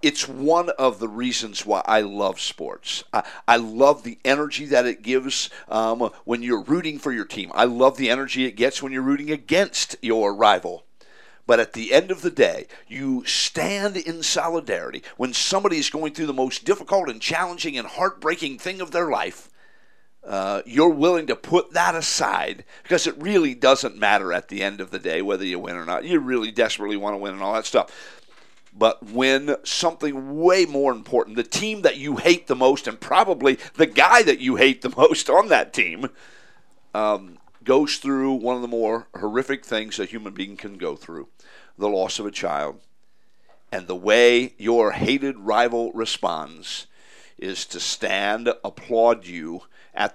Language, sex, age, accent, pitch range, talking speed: English, male, 50-69, American, 110-165 Hz, 185 wpm